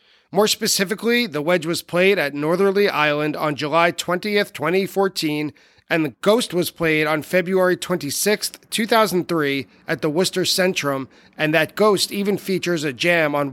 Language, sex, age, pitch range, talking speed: English, male, 40-59, 155-195 Hz, 150 wpm